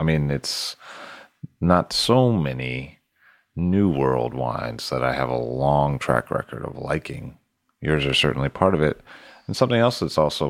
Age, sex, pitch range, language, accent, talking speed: 30-49, male, 65-85 Hz, English, American, 165 wpm